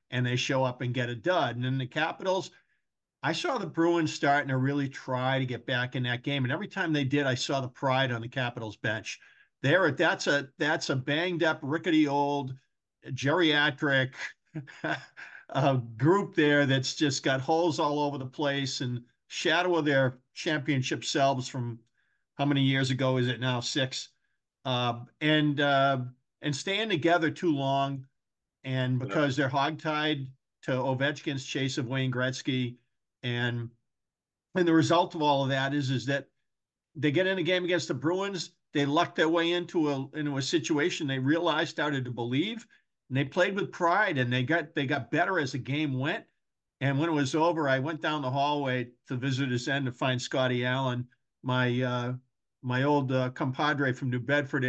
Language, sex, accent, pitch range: English, male, American, 130-155 Hz